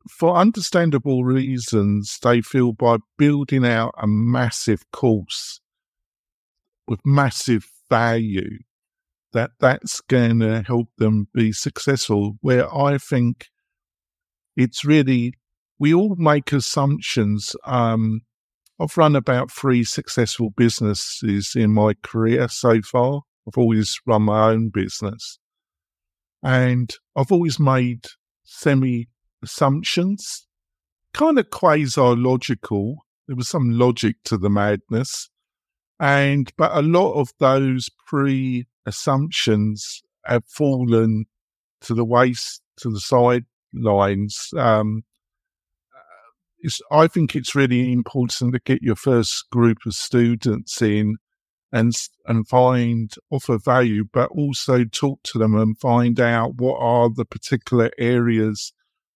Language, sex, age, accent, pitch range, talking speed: English, male, 50-69, British, 110-135 Hz, 115 wpm